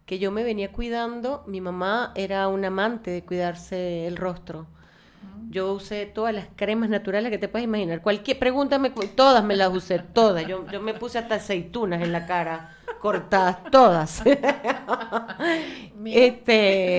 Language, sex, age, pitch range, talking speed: Spanish, female, 30-49, 180-230 Hz, 160 wpm